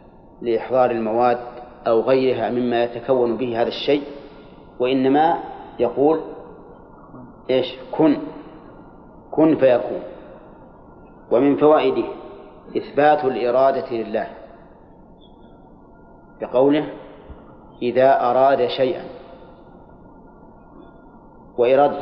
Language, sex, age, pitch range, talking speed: Arabic, male, 40-59, 125-145 Hz, 70 wpm